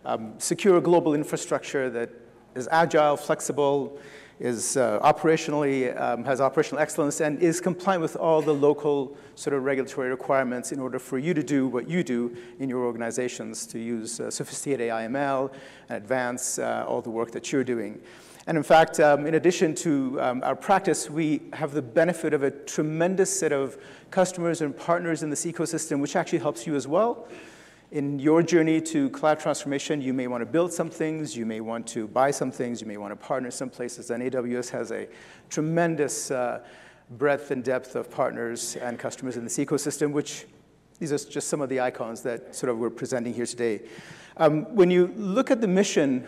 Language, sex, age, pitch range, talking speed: English, male, 40-59, 130-165 Hz, 190 wpm